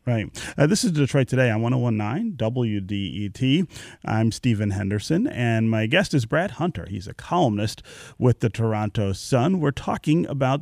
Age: 30-49